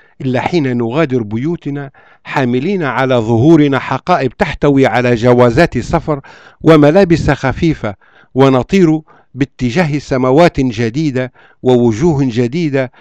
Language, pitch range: Arabic, 125-165 Hz